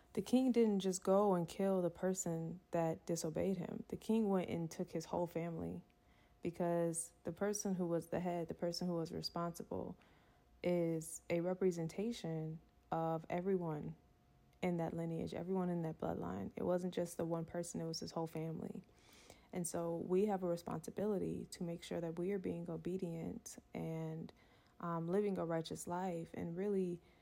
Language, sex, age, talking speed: English, female, 20-39, 170 wpm